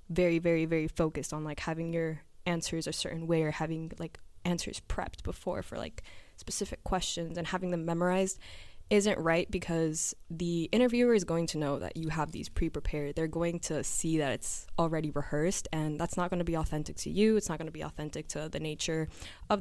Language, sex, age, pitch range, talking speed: English, female, 10-29, 150-175 Hz, 205 wpm